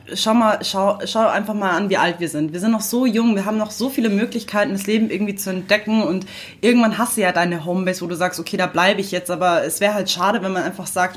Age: 20-39